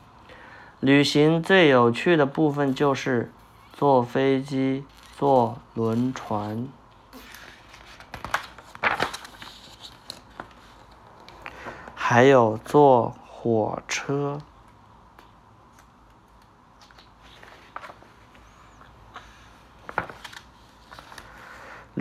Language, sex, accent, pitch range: Chinese, male, native, 120-145 Hz